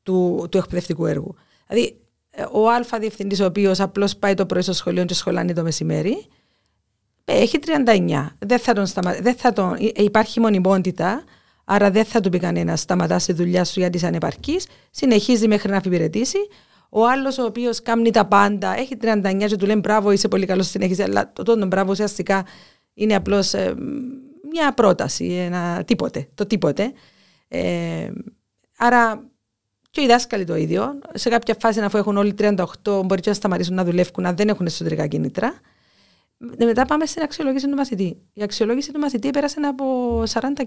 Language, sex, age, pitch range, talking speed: Greek, female, 40-59, 185-230 Hz, 175 wpm